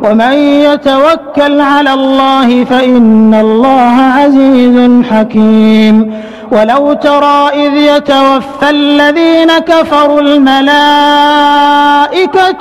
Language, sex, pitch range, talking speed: English, male, 250-290 Hz, 70 wpm